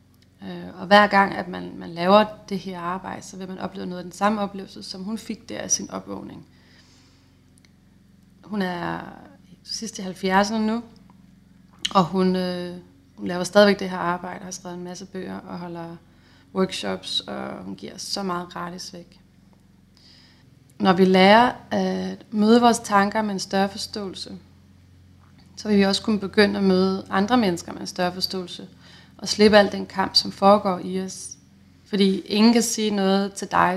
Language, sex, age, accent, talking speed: Danish, female, 30-49, native, 175 wpm